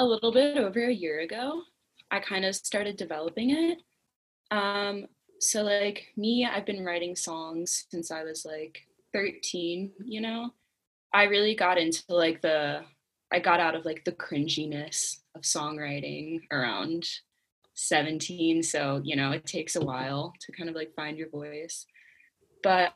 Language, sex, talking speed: English, female, 155 wpm